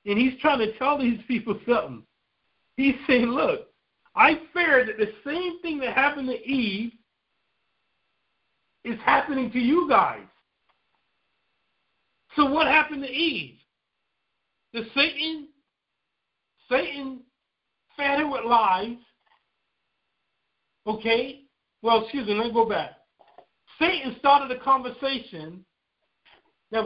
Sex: male